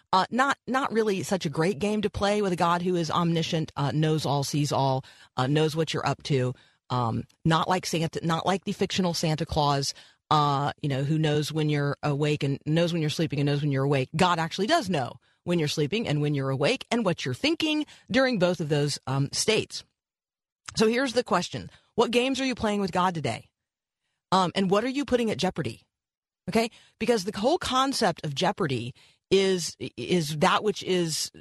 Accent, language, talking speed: American, English, 205 wpm